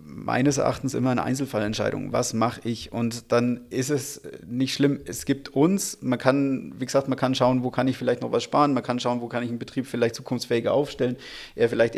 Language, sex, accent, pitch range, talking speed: German, male, German, 125-145 Hz, 215 wpm